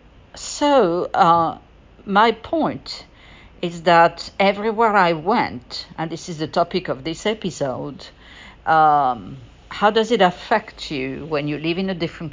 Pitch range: 150-185 Hz